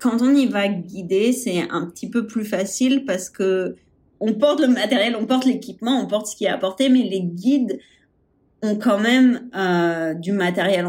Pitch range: 185-245 Hz